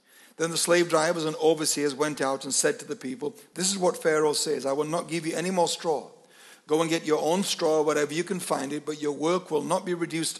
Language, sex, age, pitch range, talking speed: English, male, 60-79, 150-175 Hz, 255 wpm